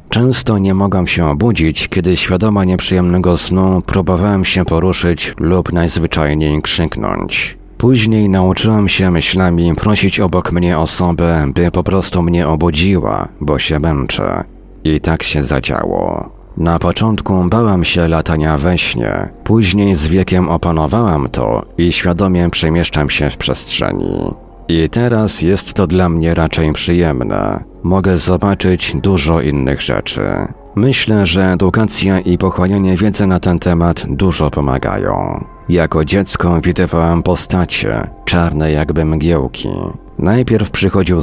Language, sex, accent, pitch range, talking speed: Polish, male, native, 80-95 Hz, 125 wpm